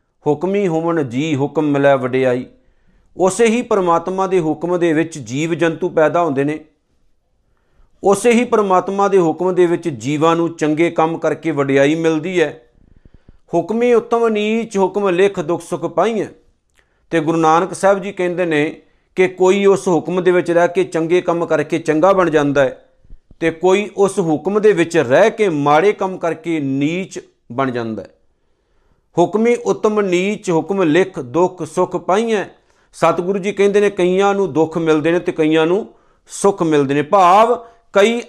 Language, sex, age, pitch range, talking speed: Punjabi, male, 50-69, 155-195 Hz, 160 wpm